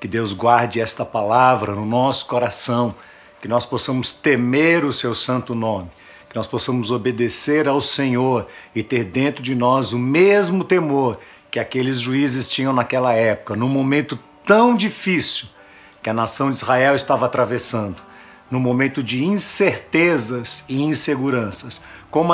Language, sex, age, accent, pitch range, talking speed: Portuguese, male, 50-69, Brazilian, 115-145 Hz, 145 wpm